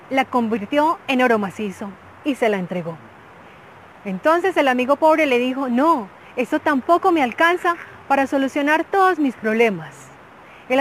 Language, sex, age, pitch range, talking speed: Spanish, female, 30-49, 220-310 Hz, 145 wpm